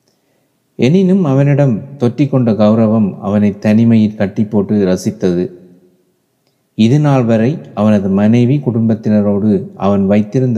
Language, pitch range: Tamil, 105-130 Hz